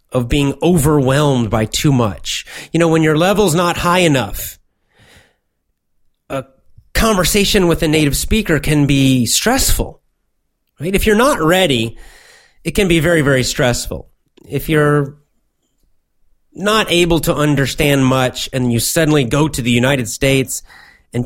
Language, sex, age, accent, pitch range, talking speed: English, male, 30-49, American, 120-165 Hz, 140 wpm